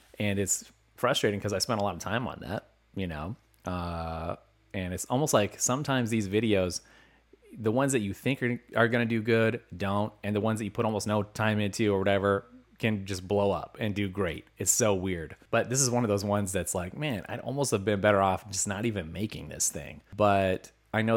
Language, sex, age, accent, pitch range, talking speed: English, male, 30-49, American, 95-115 Hz, 225 wpm